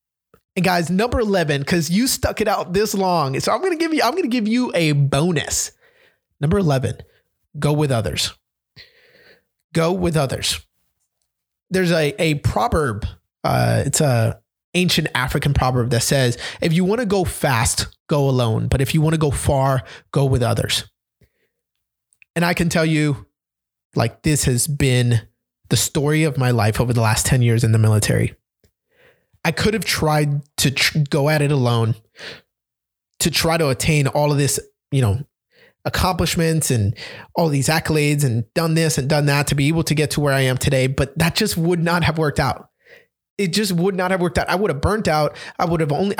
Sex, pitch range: male, 130-170 Hz